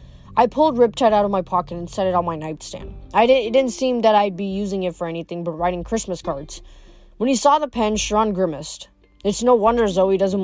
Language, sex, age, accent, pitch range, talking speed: English, female, 20-39, American, 170-235 Hz, 235 wpm